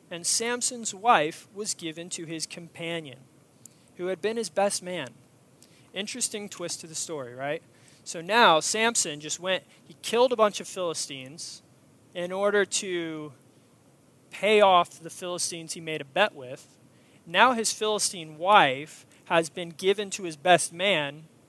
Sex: male